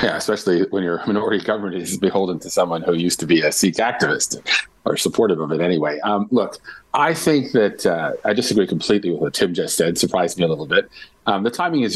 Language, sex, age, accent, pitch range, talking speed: English, male, 30-49, American, 85-110 Hz, 230 wpm